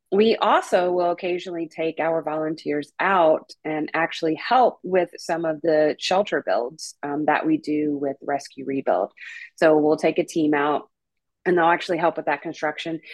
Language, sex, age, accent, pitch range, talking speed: English, female, 30-49, American, 155-190 Hz, 170 wpm